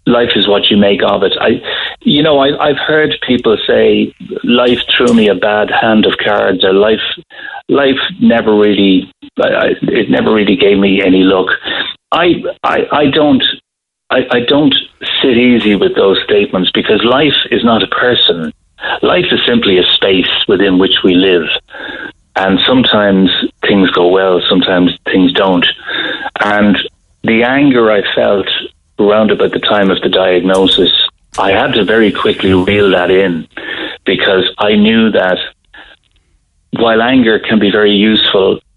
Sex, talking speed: male, 155 wpm